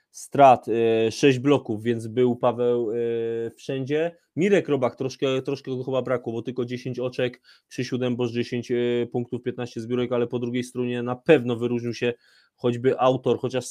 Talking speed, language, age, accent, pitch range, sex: 165 wpm, Polish, 20-39, native, 120-130 Hz, male